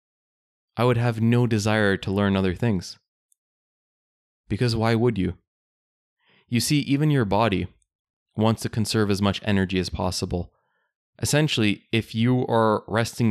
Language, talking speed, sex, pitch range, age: English, 140 wpm, male, 100-115 Hz, 20-39